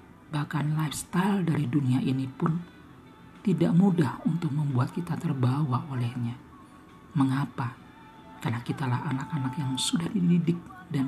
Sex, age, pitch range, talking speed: male, 50-69, 135-165 Hz, 115 wpm